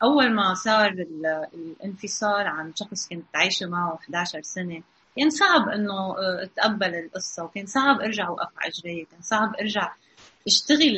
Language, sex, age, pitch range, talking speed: Arabic, female, 30-49, 180-250 Hz, 140 wpm